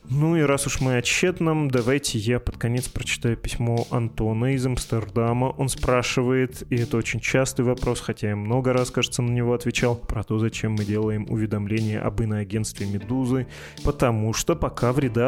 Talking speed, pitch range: 170 wpm, 110-130 Hz